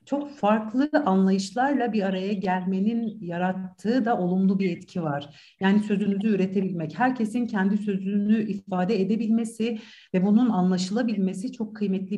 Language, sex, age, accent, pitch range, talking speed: Turkish, female, 60-79, native, 190-235 Hz, 125 wpm